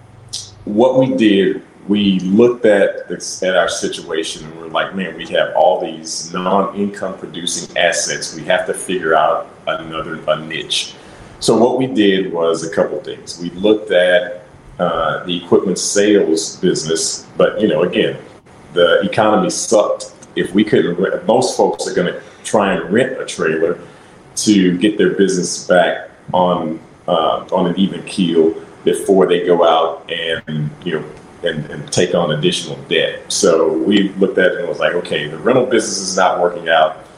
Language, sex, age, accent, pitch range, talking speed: English, male, 40-59, American, 85-125 Hz, 175 wpm